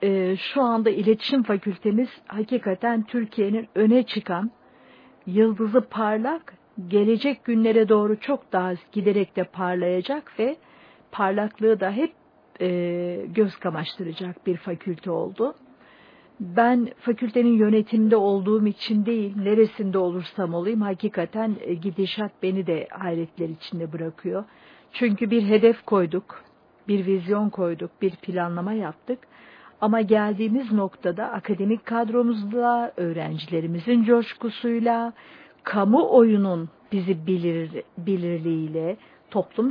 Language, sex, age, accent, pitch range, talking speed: Turkish, female, 50-69, native, 185-235 Hz, 100 wpm